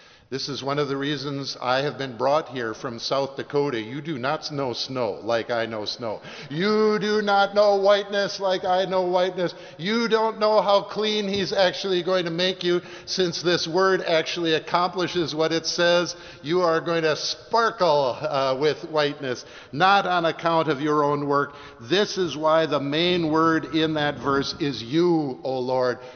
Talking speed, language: 180 wpm, English